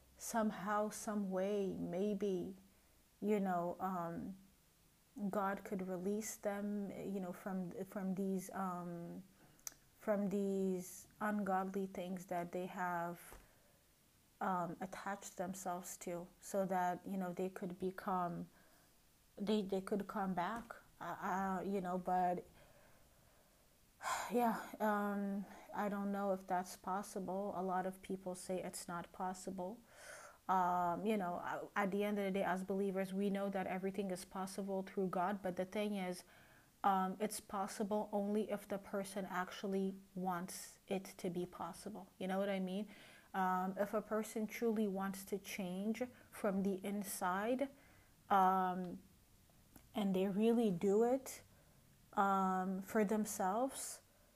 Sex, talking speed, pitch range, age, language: female, 135 wpm, 185-205 Hz, 30-49, English